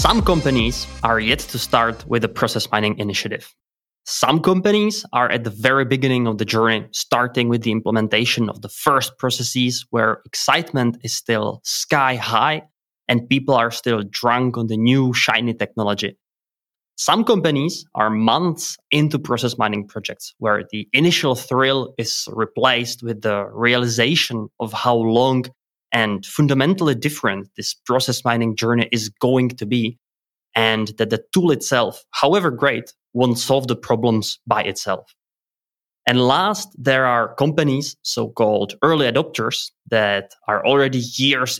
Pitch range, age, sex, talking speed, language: 110-135 Hz, 20-39, male, 145 wpm, English